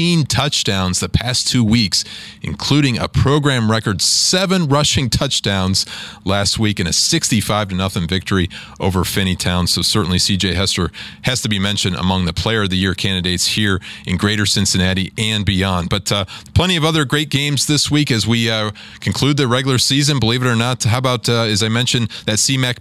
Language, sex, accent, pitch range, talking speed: English, male, American, 100-130 Hz, 185 wpm